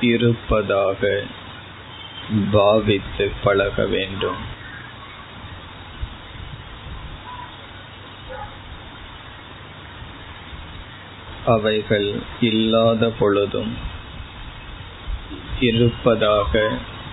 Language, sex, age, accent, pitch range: Tamil, male, 20-39, native, 100-110 Hz